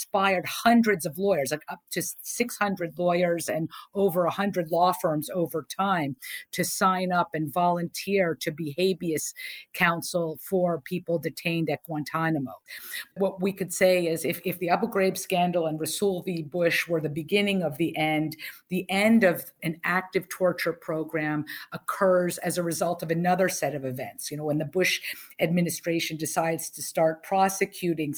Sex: female